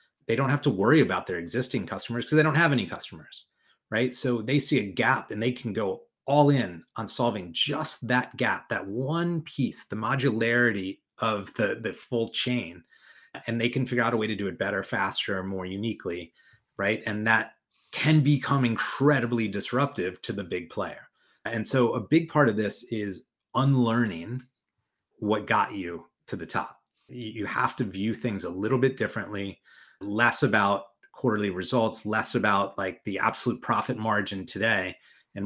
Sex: male